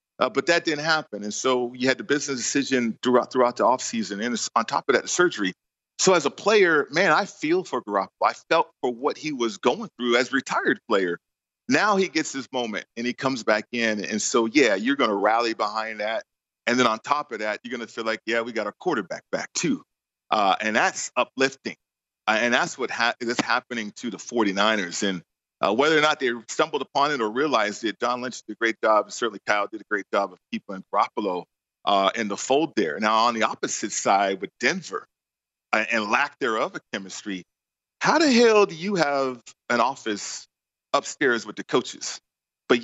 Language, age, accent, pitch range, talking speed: English, 40-59, American, 115-145 Hz, 215 wpm